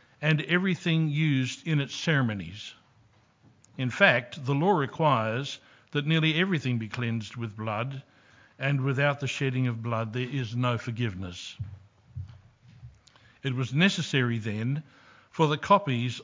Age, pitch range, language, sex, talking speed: 60-79, 120-155 Hz, English, male, 130 wpm